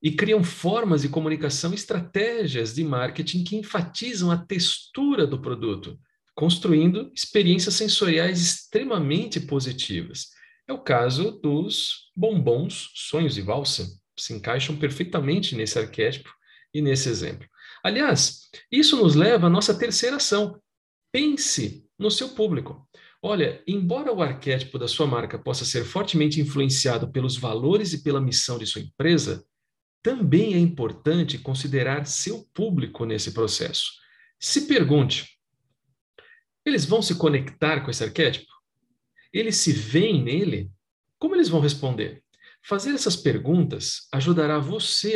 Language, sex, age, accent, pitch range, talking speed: Portuguese, male, 50-69, Brazilian, 135-200 Hz, 130 wpm